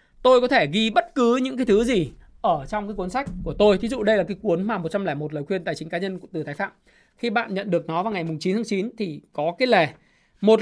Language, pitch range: Vietnamese, 180-230 Hz